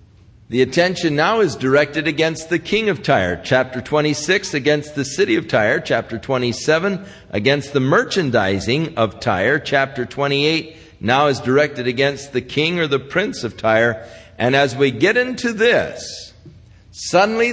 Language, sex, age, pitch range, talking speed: English, male, 50-69, 120-160 Hz, 150 wpm